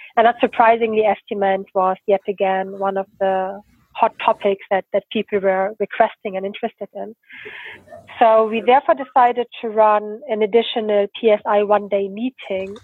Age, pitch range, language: 30-49, 200-225 Hz, English